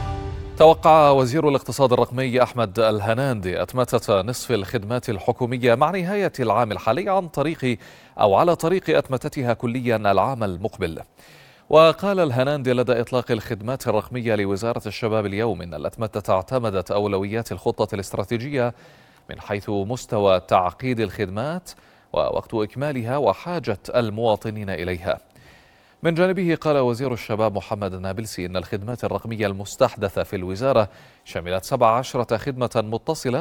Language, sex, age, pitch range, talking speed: Arabic, male, 30-49, 100-130 Hz, 115 wpm